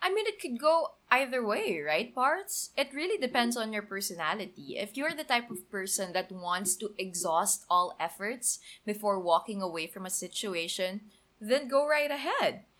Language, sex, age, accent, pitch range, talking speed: English, female, 20-39, Filipino, 185-255 Hz, 175 wpm